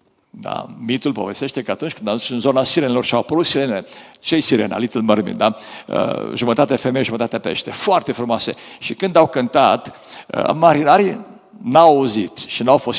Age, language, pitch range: 50-69, Romanian, 115-165 Hz